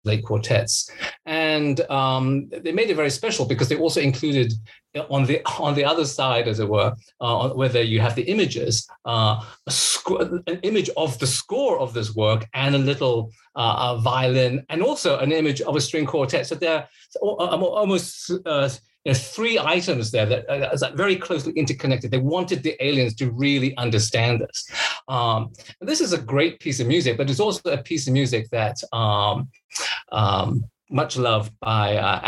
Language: English